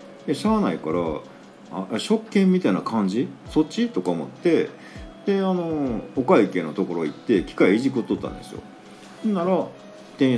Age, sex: 50-69, male